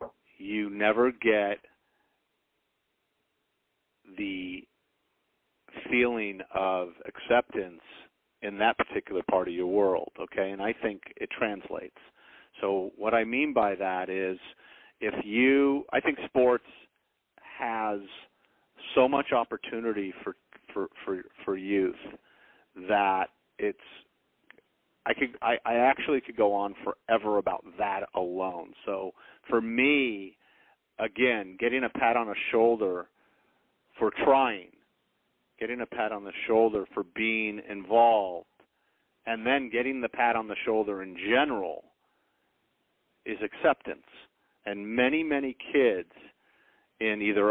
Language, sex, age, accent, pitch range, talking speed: English, male, 40-59, American, 100-120 Hz, 120 wpm